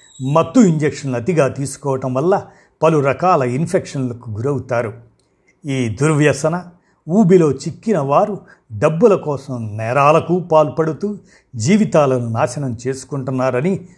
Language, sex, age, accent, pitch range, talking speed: Telugu, male, 50-69, native, 125-165 Hz, 90 wpm